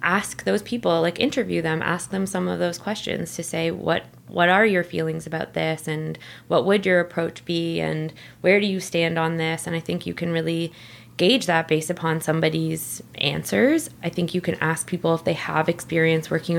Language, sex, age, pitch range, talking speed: English, female, 20-39, 160-175 Hz, 205 wpm